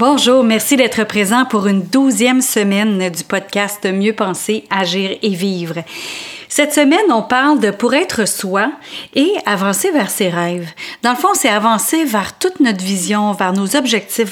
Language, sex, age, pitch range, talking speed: French, female, 40-59, 205-285 Hz, 170 wpm